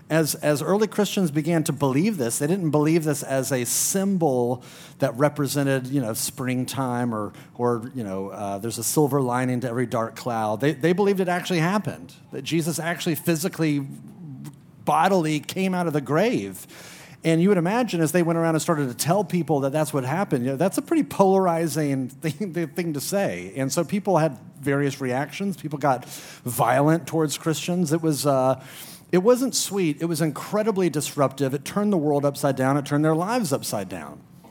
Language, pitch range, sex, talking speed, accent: English, 130-170 Hz, male, 190 wpm, American